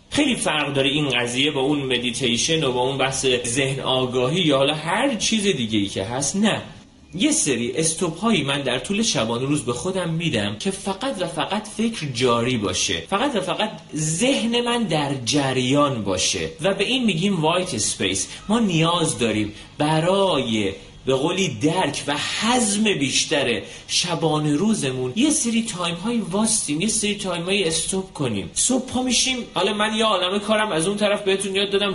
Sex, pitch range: male, 135-200 Hz